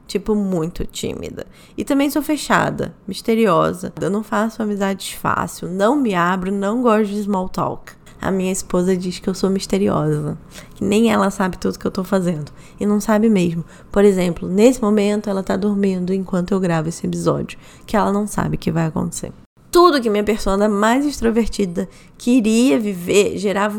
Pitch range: 195-235 Hz